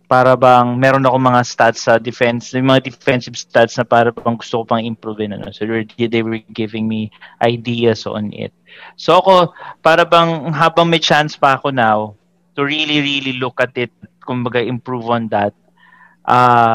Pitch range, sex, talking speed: 115-145 Hz, male, 185 wpm